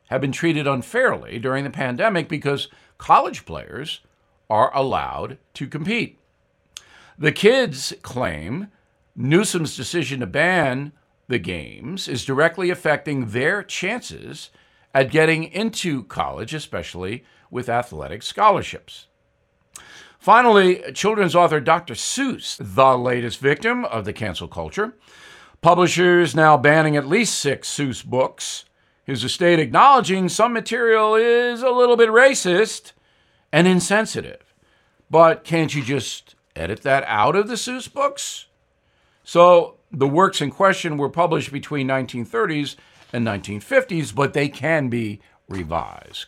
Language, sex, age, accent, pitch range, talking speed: English, male, 60-79, American, 135-185 Hz, 125 wpm